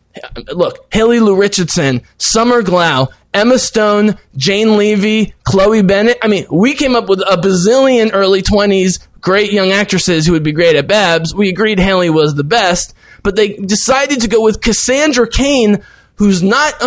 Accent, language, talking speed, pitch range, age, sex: American, English, 165 wpm, 200-265 Hz, 20-39, male